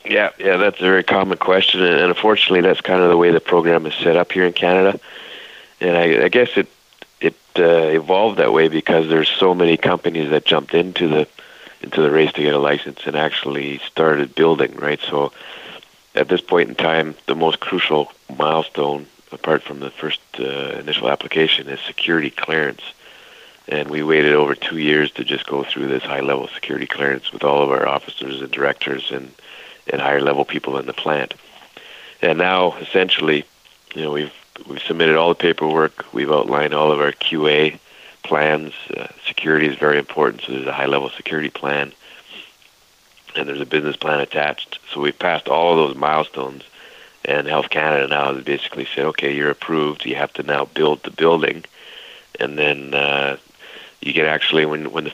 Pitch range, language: 70-80 Hz, English